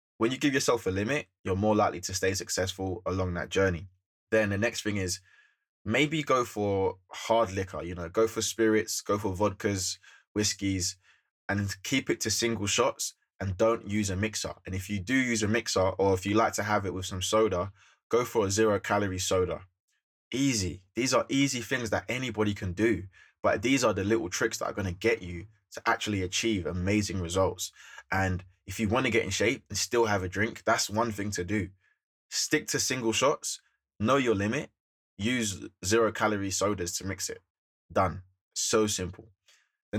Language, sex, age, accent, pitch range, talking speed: English, male, 20-39, British, 95-110 Hz, 195 wpm